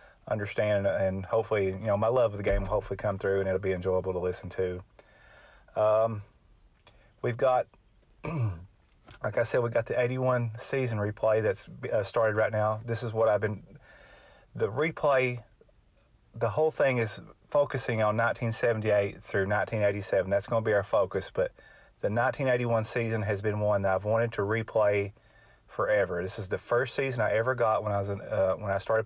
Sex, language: male, English